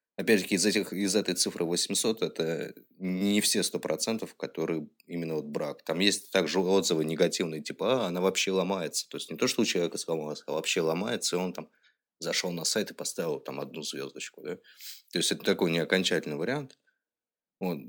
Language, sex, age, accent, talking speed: Russian, male, 20-39, native, 190 wpm